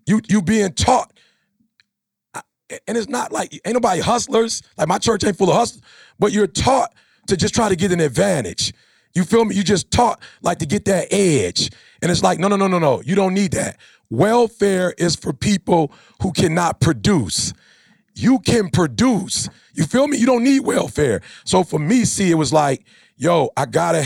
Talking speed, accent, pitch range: 195 wpm, American, 145-200 Hz